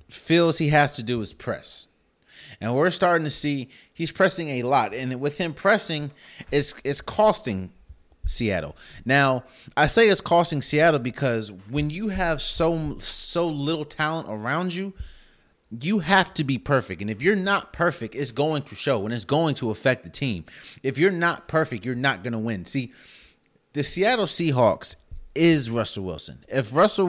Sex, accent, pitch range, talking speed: male, American, 110-165 Hz, 175 wpm